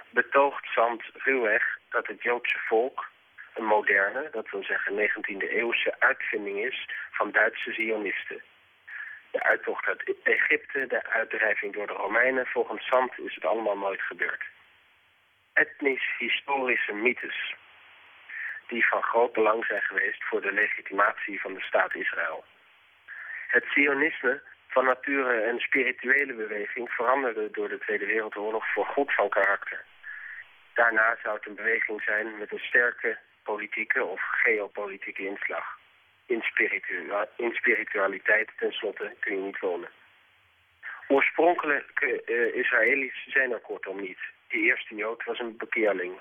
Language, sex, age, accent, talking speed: Dutch, male, 40-59, Dutch, 125 wpm